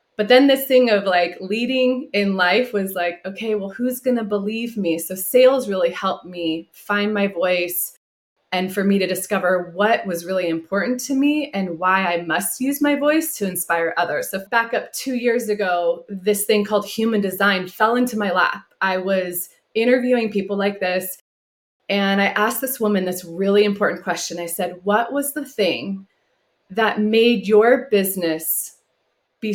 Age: 20-39